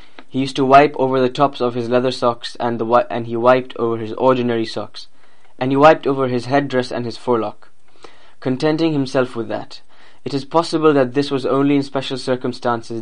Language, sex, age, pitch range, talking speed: English, male, 10-29, 115-130 Hz, 195 wpm